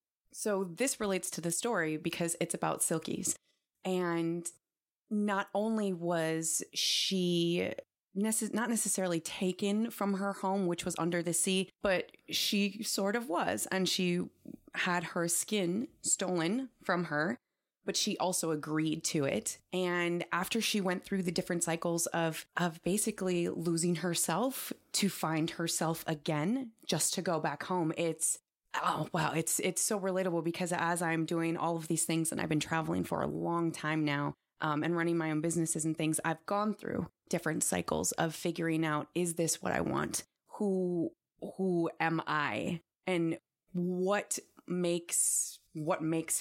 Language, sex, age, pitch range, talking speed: English, female, 20-39, 165-190 Hz, 155 wpm